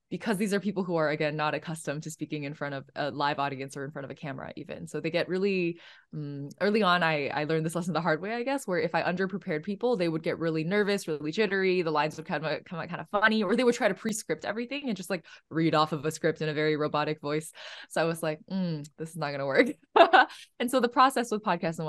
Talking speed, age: 275 wpm, 20-39